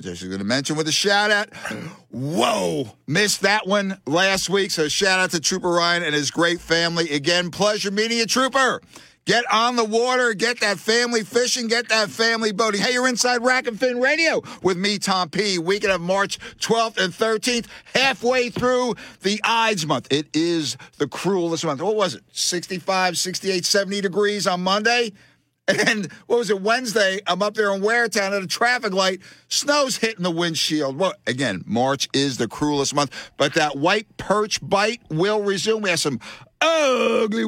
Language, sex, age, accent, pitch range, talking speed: English, male, 50-69, American, 165-225 Hz, 180 wpm